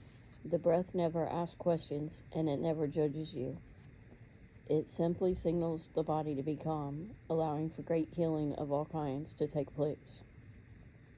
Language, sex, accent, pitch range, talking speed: English, female, American, 125-160 Hz, 150 wpm